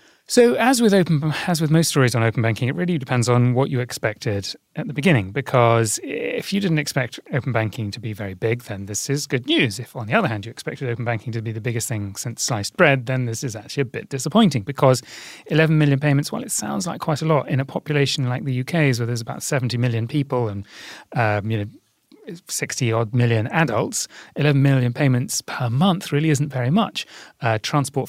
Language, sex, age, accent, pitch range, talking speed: English, male, 30-49, British, 115-150 Hz, 220 wpm